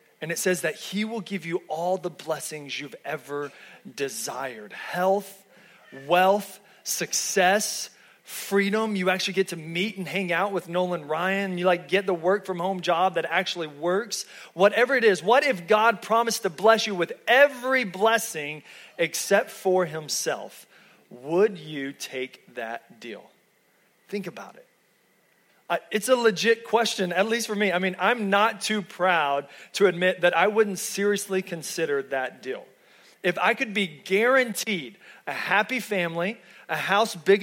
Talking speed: 160 wpm